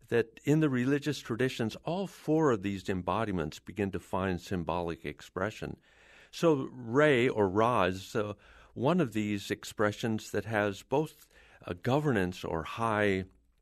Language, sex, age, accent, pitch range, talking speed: English, male, 50-69, American, 100-135 Hz, 145 wpm